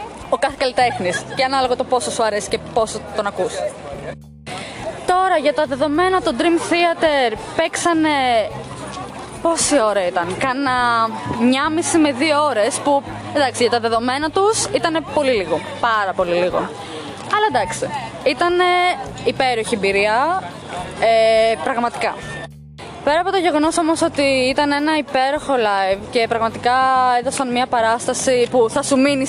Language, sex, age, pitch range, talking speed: Greek, female, 20-39, 235-330 Hz, 135 wpm